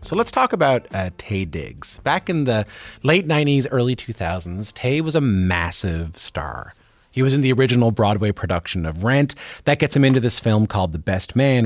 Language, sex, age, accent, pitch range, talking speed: English, male, 30-49, American, 95-135 Hz, 195 wpm